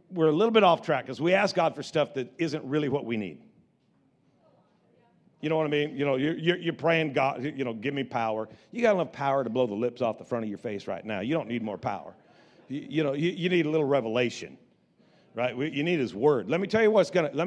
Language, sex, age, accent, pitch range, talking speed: English, male, 50-69, American, 125-165 Hz, 245 wpm